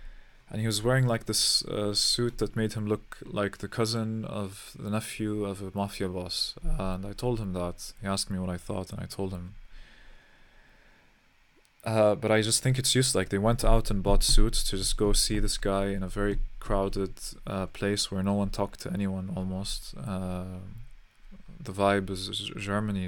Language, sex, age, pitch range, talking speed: English, male, 20-39, 95-110 Hz, 195 wpm